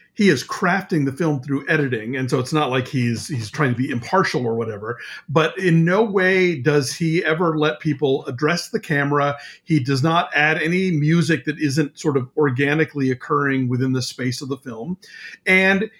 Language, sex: English, male